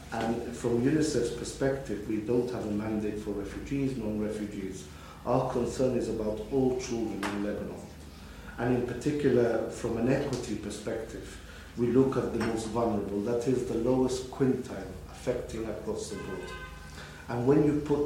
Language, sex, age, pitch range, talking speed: English, male, 50-69, 105-120 Hz, 155 wpm